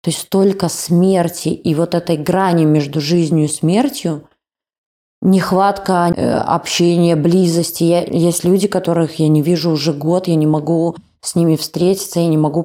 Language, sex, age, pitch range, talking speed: Russian, female, 20-39, 155-180 Hz, 155 wpm